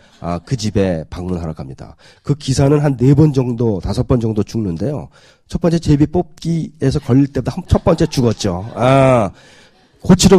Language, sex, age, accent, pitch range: Korean, male, 30-49, native, 115-180 Hz